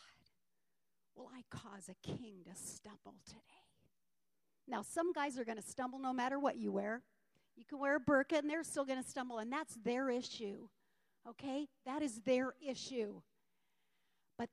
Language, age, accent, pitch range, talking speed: English, 50-69, American, 210-285 Hz, 170 wpm